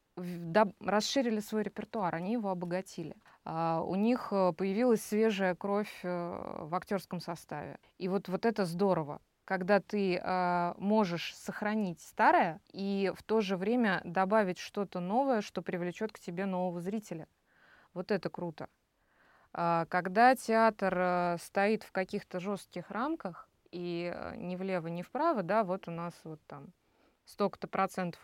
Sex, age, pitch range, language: female, 20-39, 170-205 Hz, Russian